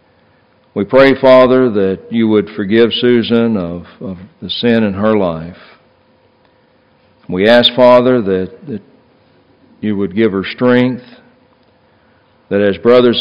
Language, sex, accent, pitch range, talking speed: English, male, American, 100-120 Hz, 125 wpm